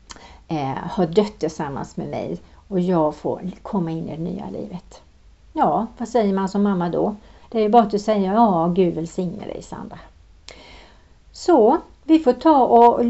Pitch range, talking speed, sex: 175-230 Hz, 180 wpm, female